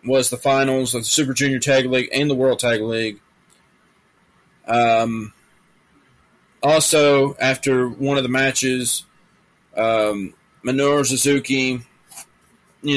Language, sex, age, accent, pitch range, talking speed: English, male, 30-49, American, 115-135 Hz, 115 wpm